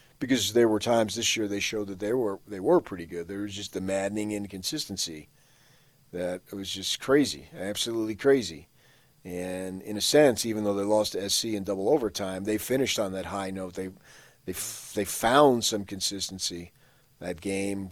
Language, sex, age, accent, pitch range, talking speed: English, male, 40-59, American, 95-115 Hz, 185 wpm